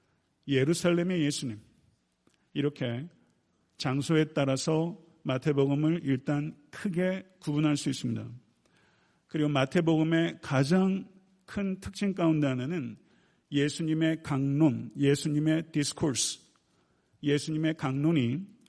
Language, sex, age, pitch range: Korean, male, 50-69, 135-175 Hz